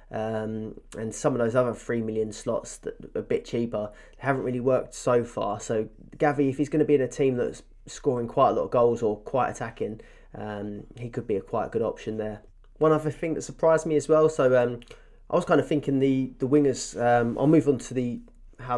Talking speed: 230 wpm